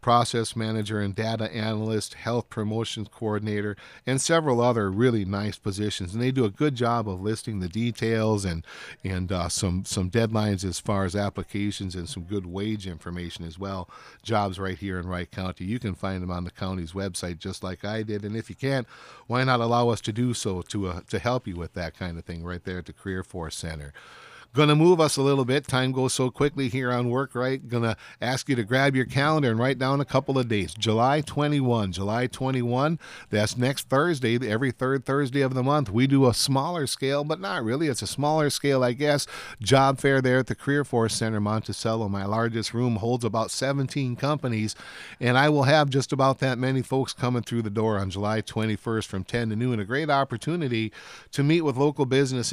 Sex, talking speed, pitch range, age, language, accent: male, 215 wpm, 100-130 Hz, 50-69, English, American